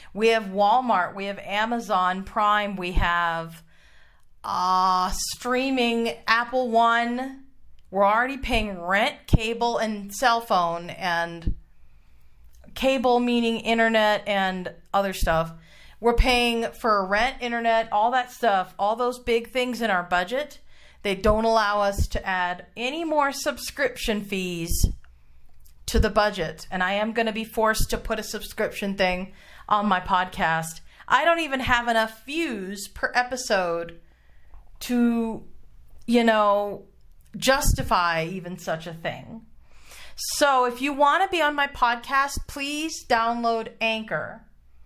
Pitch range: 185-245 Hz